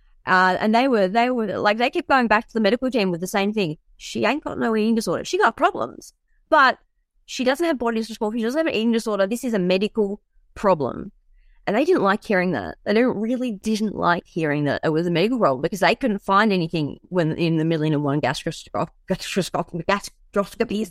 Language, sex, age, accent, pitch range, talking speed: English, female, 20-39, Australian, 180-240 Hz, 210 wpm